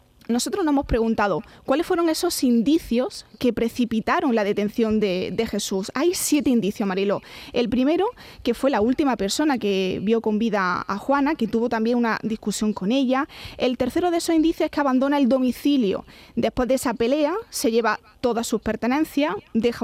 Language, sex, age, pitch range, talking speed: Spanish, female, 20-39, 225-285 Hz, 180 wpm